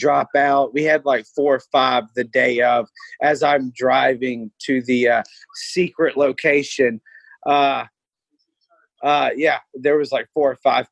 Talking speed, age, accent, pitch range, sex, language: 155 wpm, 30-49, American, 120-140 Hz, male, English